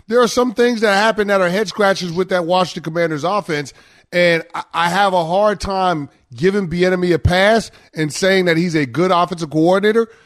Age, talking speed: 30-49, 195 wpm